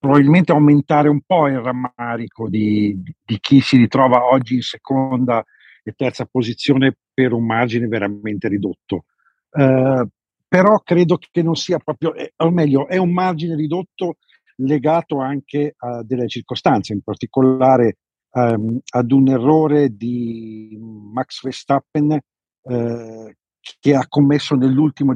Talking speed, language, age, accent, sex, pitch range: 130 wpm, Italian, 50-69, native, male, 120-150 Hz